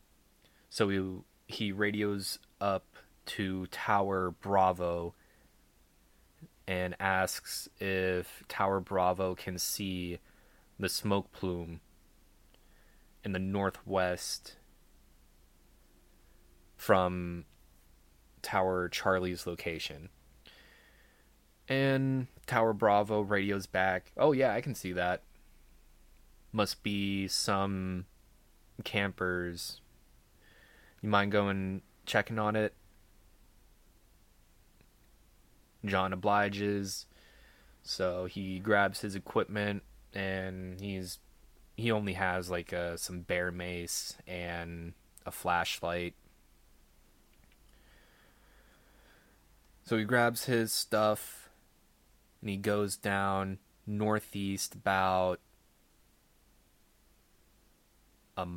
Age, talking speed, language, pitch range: 20-39, 80 wpm, English, 90-100 Hz